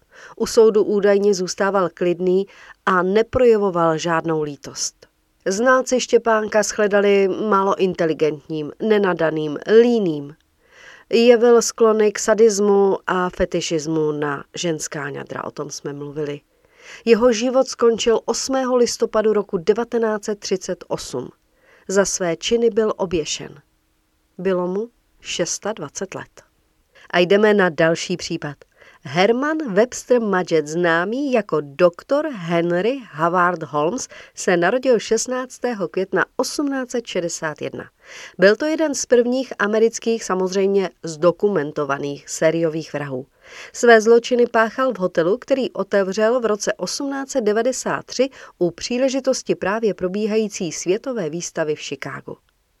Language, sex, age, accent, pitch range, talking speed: Czech, female, 40-59, native, 175-235 Hz, 105 wpm